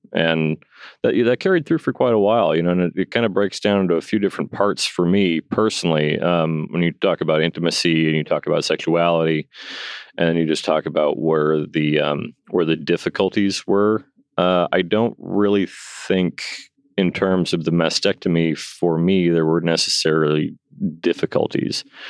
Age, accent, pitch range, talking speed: 30-49, American, 80-105 Hz, 175 wpm